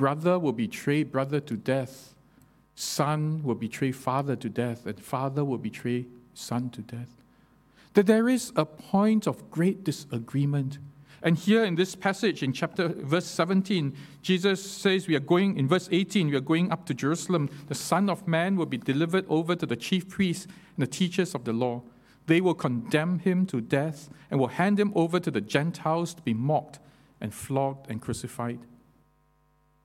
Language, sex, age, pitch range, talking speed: English, male, 50-69, 135-175 Hz, 180 wpm